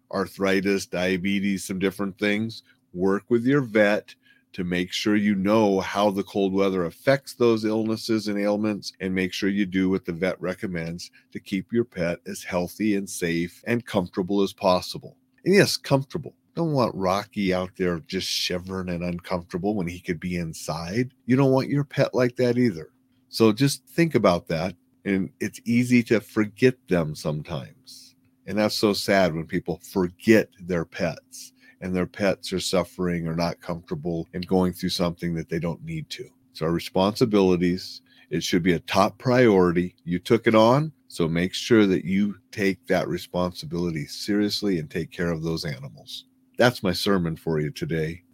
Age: 40-59